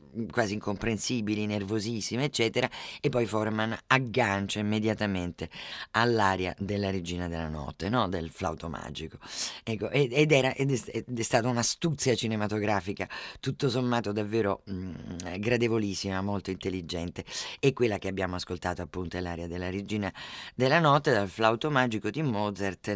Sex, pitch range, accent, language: female, 100-130 Hz, native, Italian